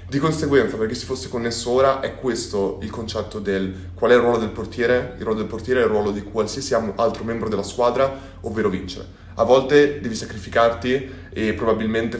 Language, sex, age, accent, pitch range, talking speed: Italian, male, 20-39, native, 100-135 Hz, 195 wpm